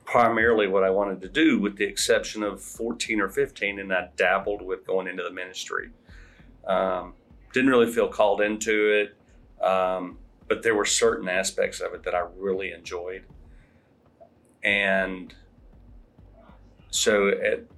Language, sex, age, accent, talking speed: English, male, 40-59, American, 145 wpm